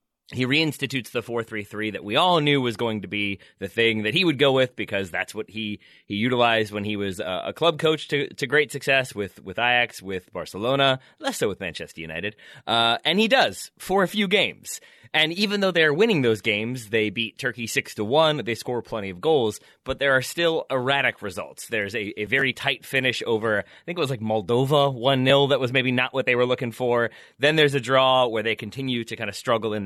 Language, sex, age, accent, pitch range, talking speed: English, male, 30-49, American, 110-145 Hz, 230 wpm